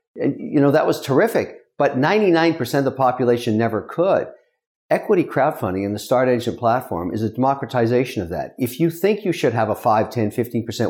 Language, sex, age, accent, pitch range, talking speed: English, male, 50-69, American, 110-145 Hz, 185 wpm